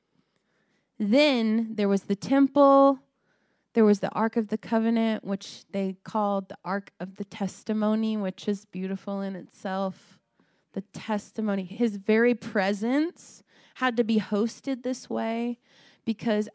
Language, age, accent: English, 20-39, American